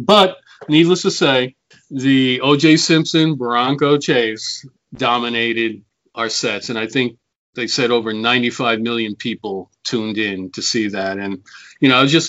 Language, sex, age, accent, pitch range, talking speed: English, male, 40-59, American, 115-145 Hz, 155 wpm